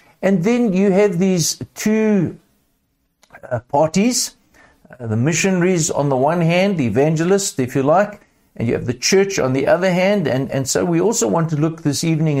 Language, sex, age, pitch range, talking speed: English, male, 60-79, 130-185 Hz, 190 wpm